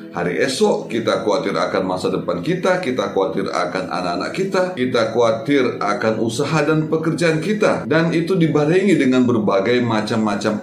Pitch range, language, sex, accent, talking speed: 110-145 Hz, Indonesian, male, native, 145 wpm